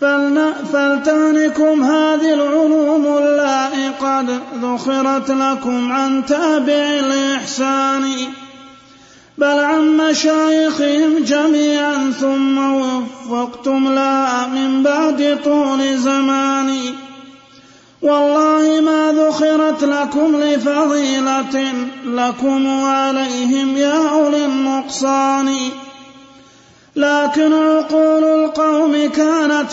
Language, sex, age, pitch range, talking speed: Arabic, male, 30-49, 270-300 Hz, 70 wpm